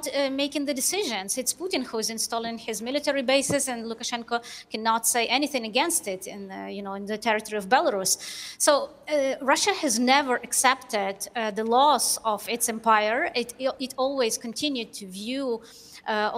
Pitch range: 215-265 Hz